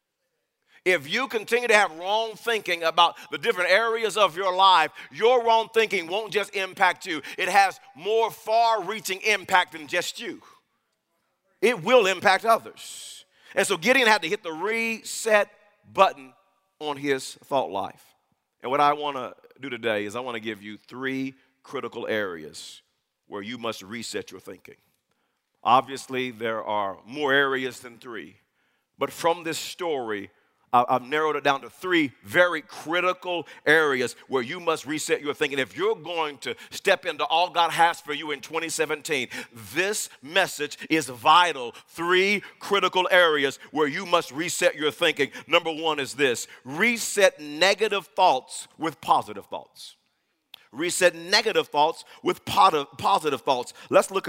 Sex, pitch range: male, 140-205 Hz